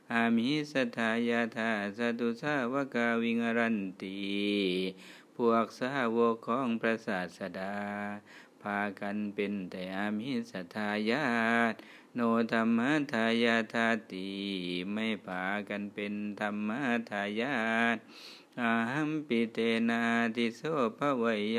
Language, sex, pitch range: Thai, male, 100-115 Hz